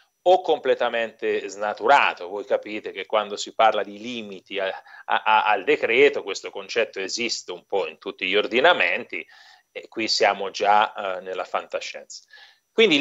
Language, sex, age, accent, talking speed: Italian, male, 30-49, native, 135 wpm